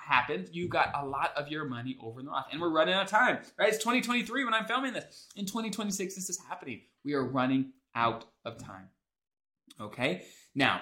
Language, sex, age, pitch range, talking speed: English, male, 20-39, 120-155 Hz, 205 wpm